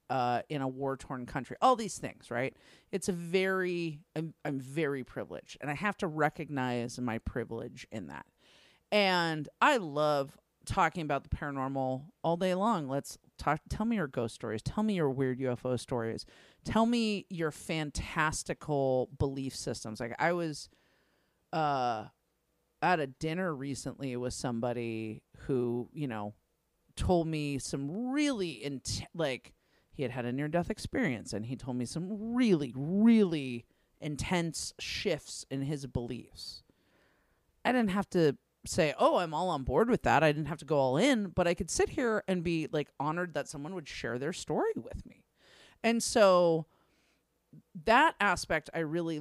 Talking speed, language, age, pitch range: 160 wpm, English, 40-59, 135-190 Hz